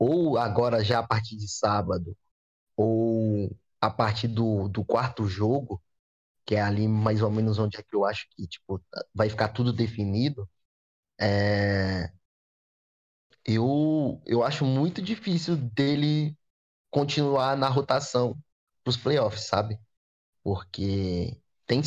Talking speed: 130 wpm